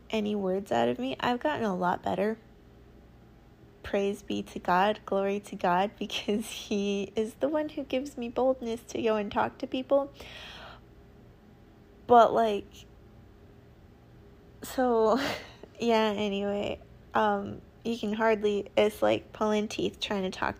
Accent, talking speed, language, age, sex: American, 140 wpm, English, 20-39, female